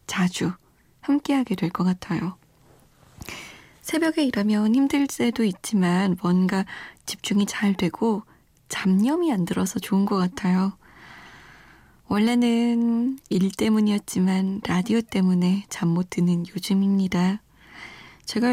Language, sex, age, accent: Korean, female, 20-39, native